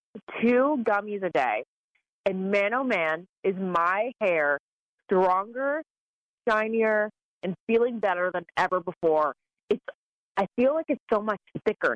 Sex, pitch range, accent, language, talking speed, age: female, 185-245 Hz, American, English, 135 wpm, 30-49